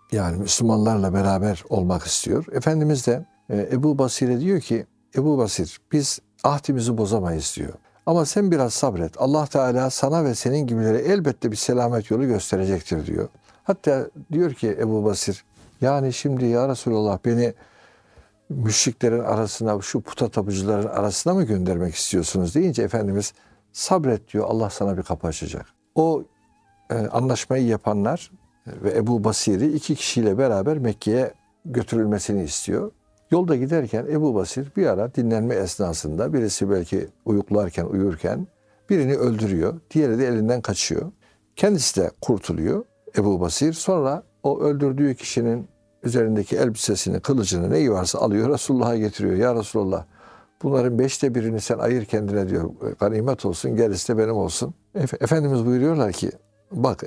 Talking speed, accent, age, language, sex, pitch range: 135 wpm, native, 60-79, Turkish, male, 100-135 Hz